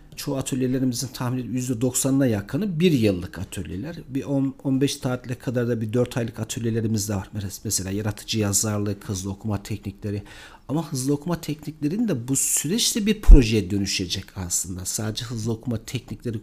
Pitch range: 110-150 Hz